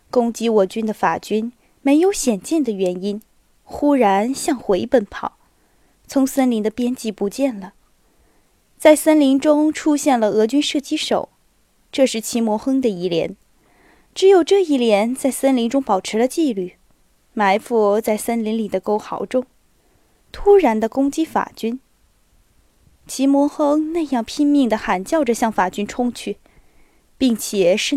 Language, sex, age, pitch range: Chinese, female, 20-39, 220-300 Hz